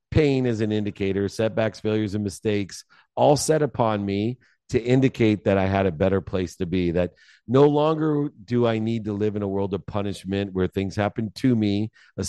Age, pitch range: 40-59, 100-120 Hz